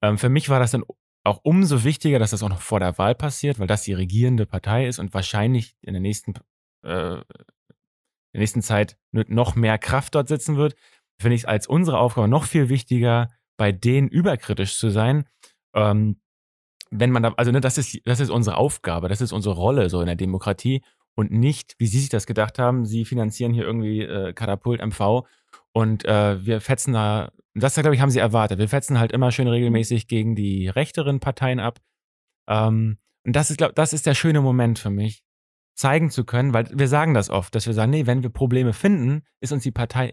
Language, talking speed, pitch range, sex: German, 210 wpm, 105-135 Hz, male